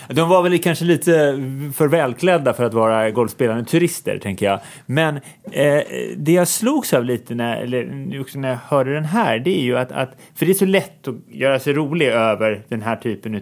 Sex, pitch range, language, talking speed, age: male, 120-165 Hz, Swedish, 210 wpm, 30-49